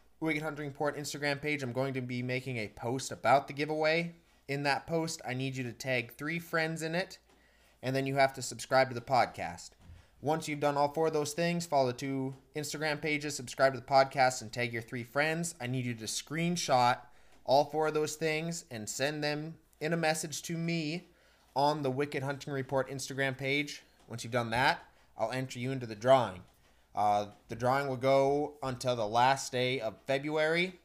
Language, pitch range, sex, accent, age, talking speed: English, 120-150 Hz, male, American, 20-39, 200 wpm